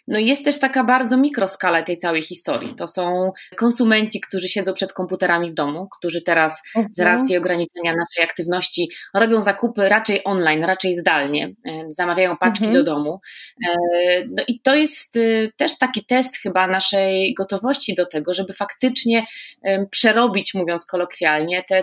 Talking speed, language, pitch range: 145 wpm, Polish, 170-215 Hz